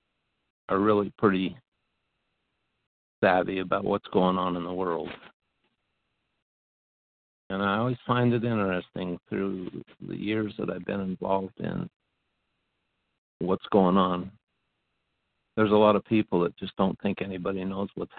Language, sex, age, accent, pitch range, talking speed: English, male, 60-79, American, 95-110 Hz, 130 wpm